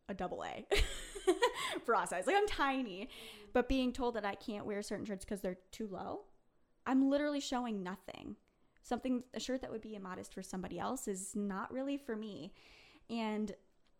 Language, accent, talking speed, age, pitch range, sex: English, American, 170 wpm, 20-39, 185-245 Hz, female